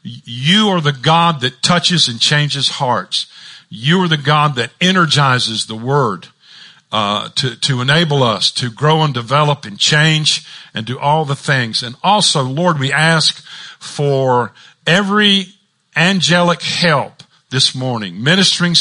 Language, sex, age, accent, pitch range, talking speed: English, male, 50-69, American, 140-175 Hz, 145 wpm